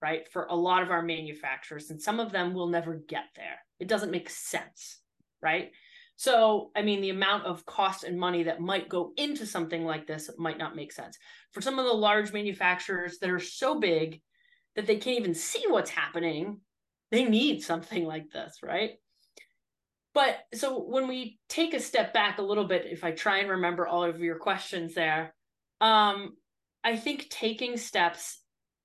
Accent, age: American, 30-49